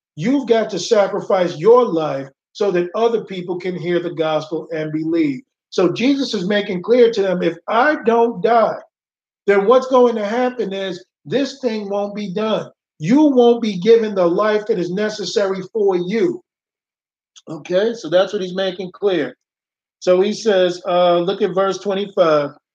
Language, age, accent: English, 50-69, American